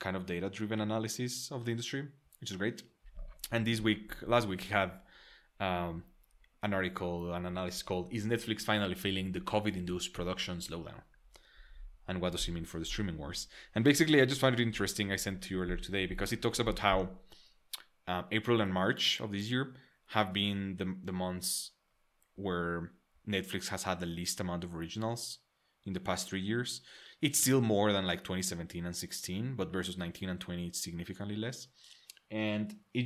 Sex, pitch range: male, 90-110 Hz